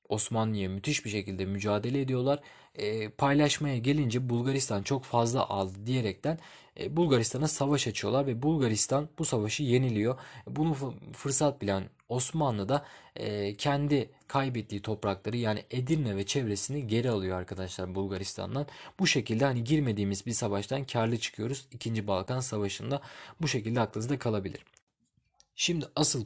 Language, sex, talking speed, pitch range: Turkish, male, 130 wpm, 100-135 Hz